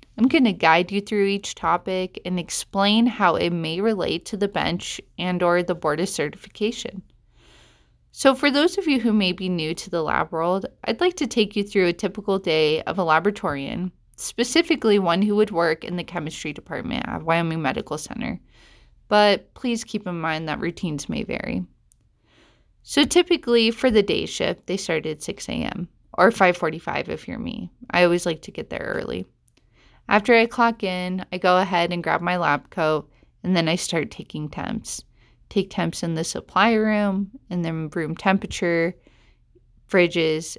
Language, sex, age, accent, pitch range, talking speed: English, female, 20-39, American, 165-210 Hz, 180 wpm